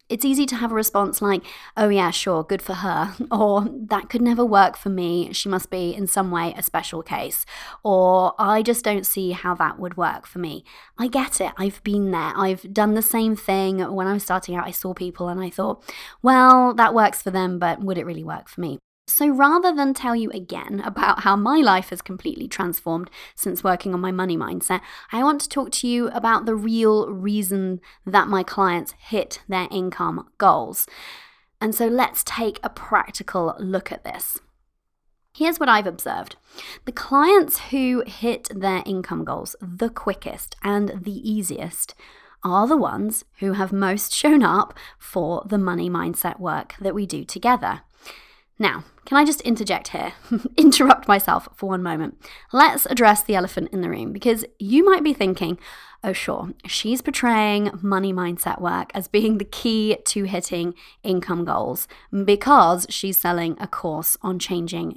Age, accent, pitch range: 20-39, British, 185-230 Hz